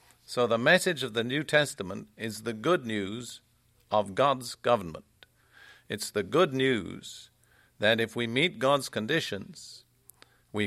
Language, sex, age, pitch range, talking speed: English, male, 50-69, 110-135 Hz, 140 wpm